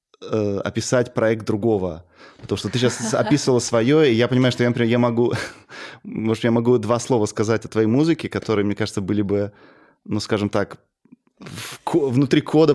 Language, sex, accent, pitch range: Russian, male, native, 105-125 Hz